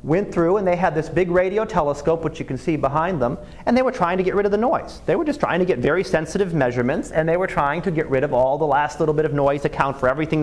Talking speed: 300 wpm